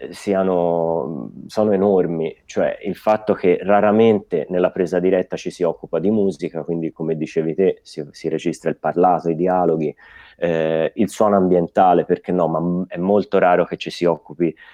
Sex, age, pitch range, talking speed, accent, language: male, 30-49, 80-95 Hz, 165 wpm, native, Italian